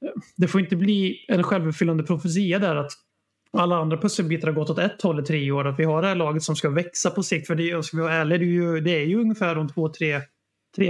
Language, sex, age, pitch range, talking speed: Swedish, male, 30-49, 150-175 Hz, 265 wpm